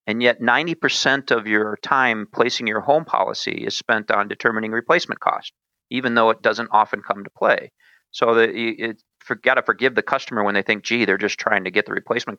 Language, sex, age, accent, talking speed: English, male, 40-59, American, 205 wpm